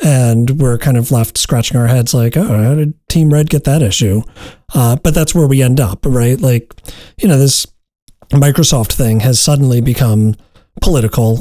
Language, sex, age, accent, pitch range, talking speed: English, male, 40-59, American, 115-140 Hz, 185 wpm